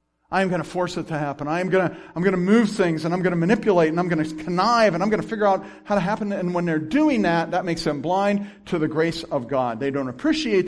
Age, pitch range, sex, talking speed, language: 50-69, 125-190 Hz, male, 275 wpm, English